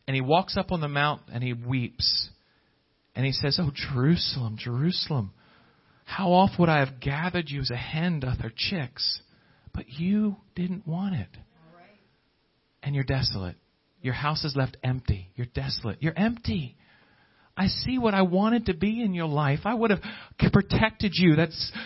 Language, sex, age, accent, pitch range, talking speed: English, male, 40-59, American, 120-165 Hz, 165 wpm